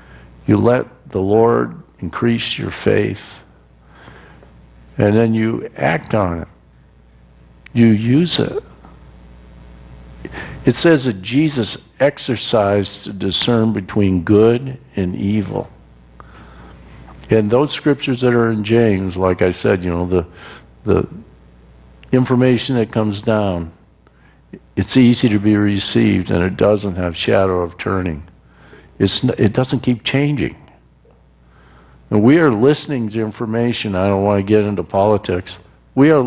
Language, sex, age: English, male, 60-79